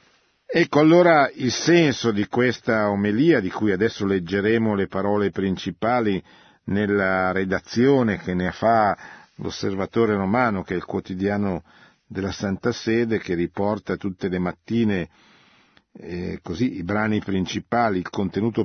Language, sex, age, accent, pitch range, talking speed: Italian, male, 50-69, native, 95-115 Hz, 130 wpm